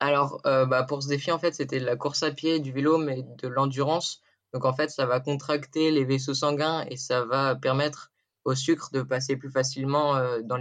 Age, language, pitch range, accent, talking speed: 20-39, French, 130-145 Hz, French, 225 wpm